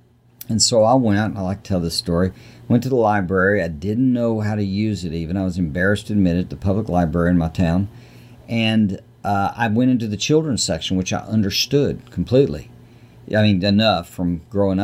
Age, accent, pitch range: 50-69, American, 90-110 Hz